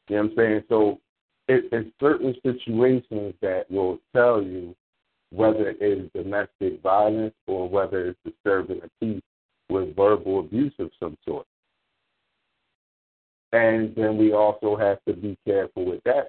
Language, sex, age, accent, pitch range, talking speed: English, male, 50-69, American, 105-145 Hz, 145 wpm